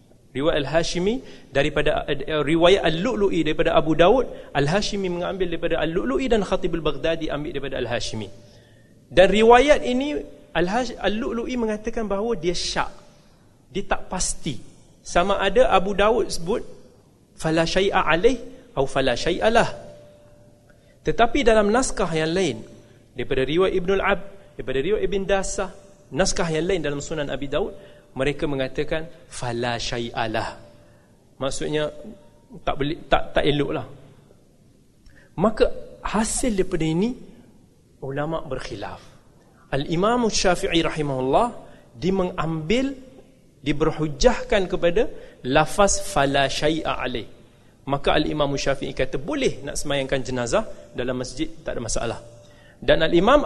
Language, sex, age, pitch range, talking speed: Malay, male, 30-49, 135-200 Hz, 125 wpm